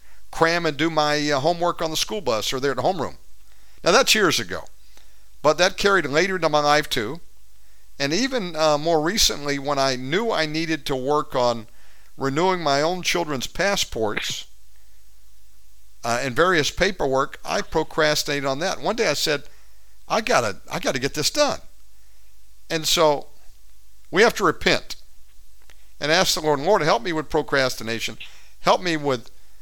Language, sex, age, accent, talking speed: English, male, 50-69, American, 165 wpm